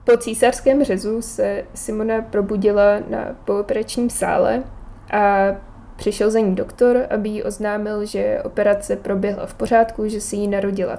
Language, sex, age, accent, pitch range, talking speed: Czech, female, 20-39, native, 195-220 Hz, 140 wpm